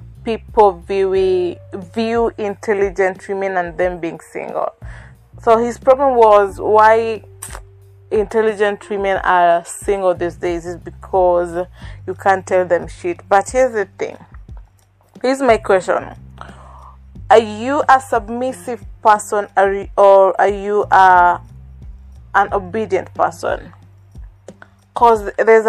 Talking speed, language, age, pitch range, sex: 110 wpm, English, 20-39, 175-230 Hz, female